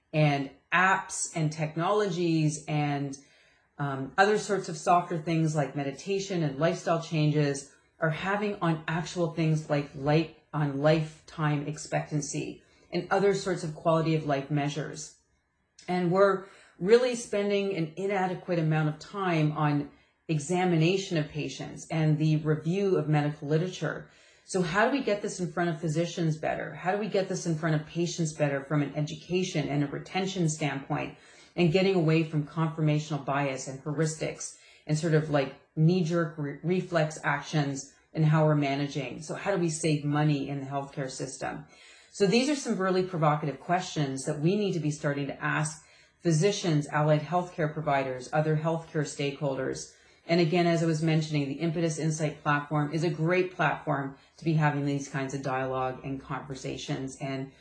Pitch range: 145-175 Hz